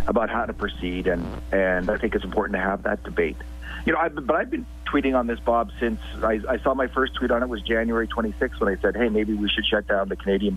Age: 40-59